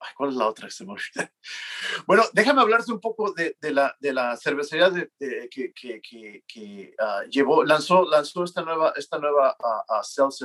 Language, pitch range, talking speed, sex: English, 125-180 Hz, 165 wpm, male